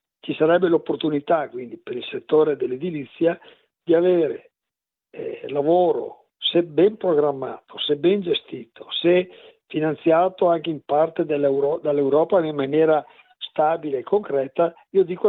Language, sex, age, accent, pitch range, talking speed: Italian, male, 50-69, native, 150-205 Hz, 120 wpm